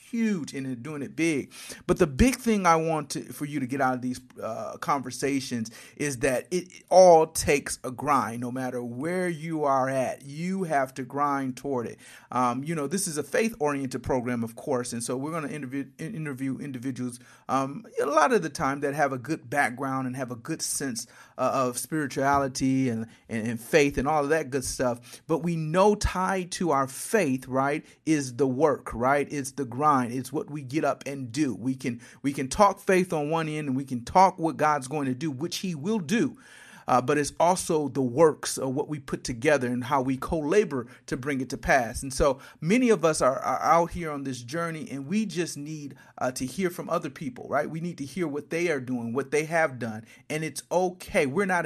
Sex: male